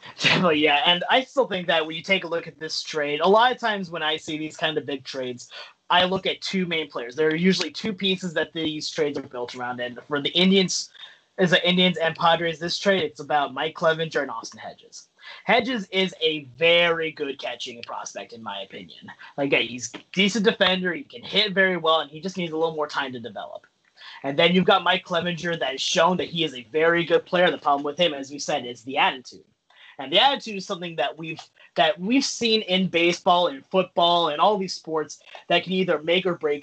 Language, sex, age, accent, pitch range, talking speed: English, male, 30-49, American, 150-190 Hz, 230 wpm